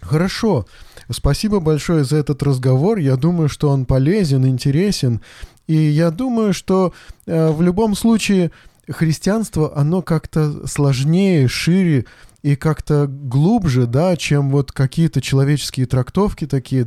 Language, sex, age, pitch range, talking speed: Russian, male, 20-39, 130-165 Hz, 125 wpm